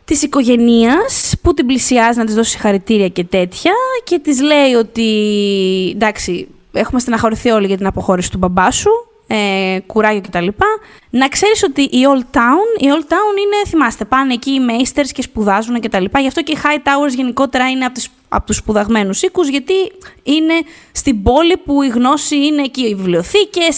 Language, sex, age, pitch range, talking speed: Greek, female, 20-39, 205-300 Hz, 175 wpm